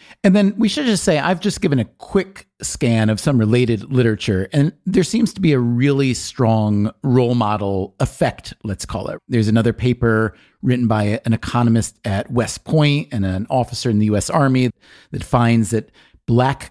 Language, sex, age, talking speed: English, male, 40-59, 185 wpm